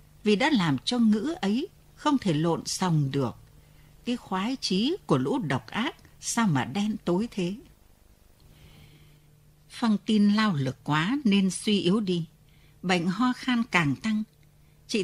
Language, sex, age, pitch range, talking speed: Vietnamese, female, 60-79, 150-230 Hz, 150 wpm